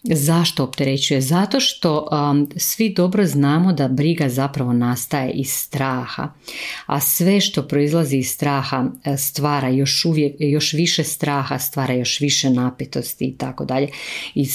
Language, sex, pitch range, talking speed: Croatian, female, 135-155 Hz, 140 wpm